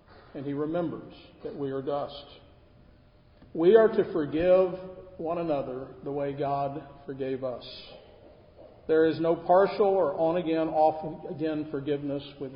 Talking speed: 140 wpm